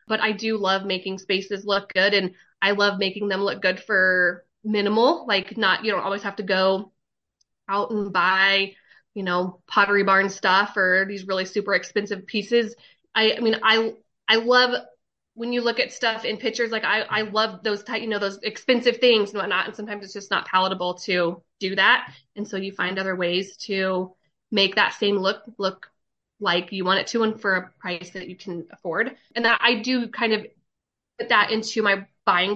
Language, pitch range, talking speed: English, 190-220 Hz, 205 wpm